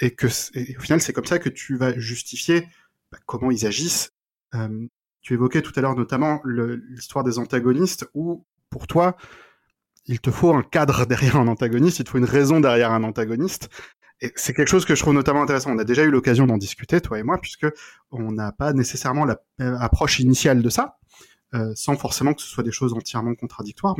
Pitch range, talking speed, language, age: 120-150 Hz, 215 wpm, French, 20-39